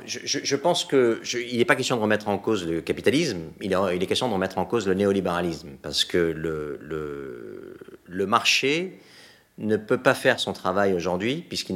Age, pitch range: 40-59, 90-120 Hz